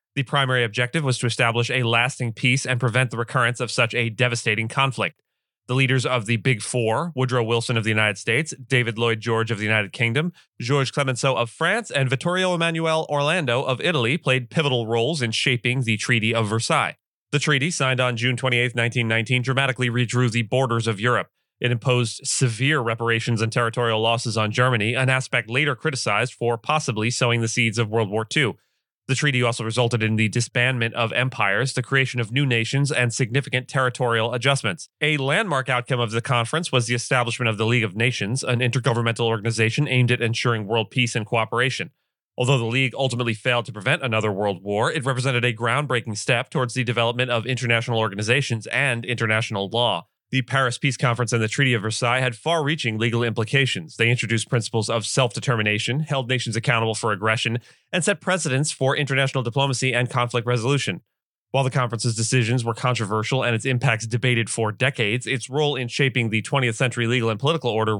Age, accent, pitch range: 30-49, American, 115-135 Hz